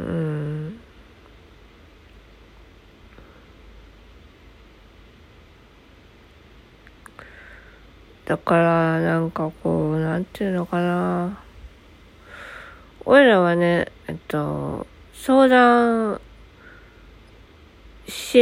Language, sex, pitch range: Japanese, female, 155-215 Hz